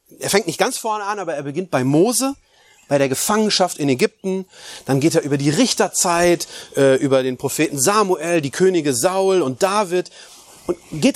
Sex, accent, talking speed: male, German, 175 wpm